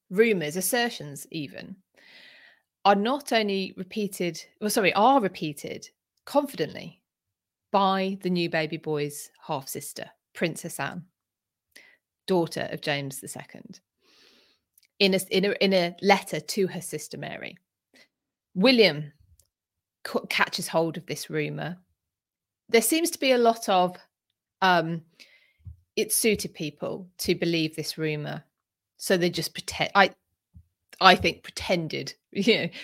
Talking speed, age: 120 wpm, 30-49